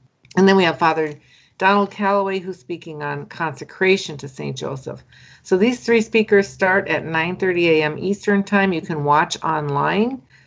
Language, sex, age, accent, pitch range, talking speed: English, female, 50-69, American, 150-180 Hz, 160 wpm